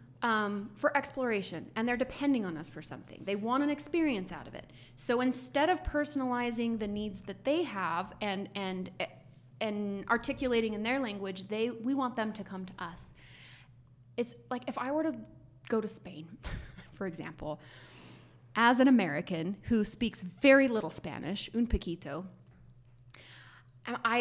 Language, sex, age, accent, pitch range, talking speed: English, female, 30-49, American, 170-235 Hz, 155 wpm